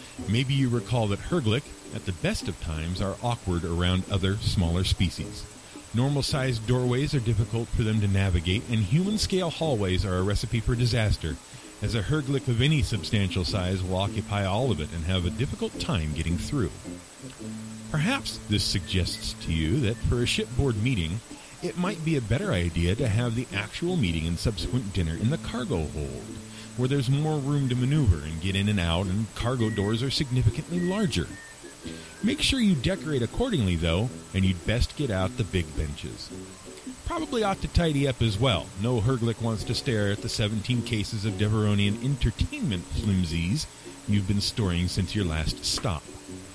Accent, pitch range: American, 95-130 Hz